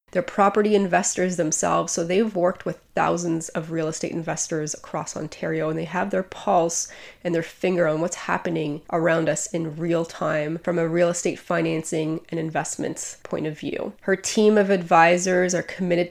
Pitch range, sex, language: 165-190 Hz, female, English